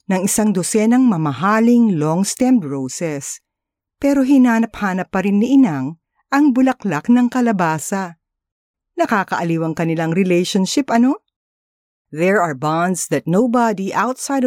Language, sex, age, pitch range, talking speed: Filipino, female, 50-69, 145-220 Hz, 110 wpm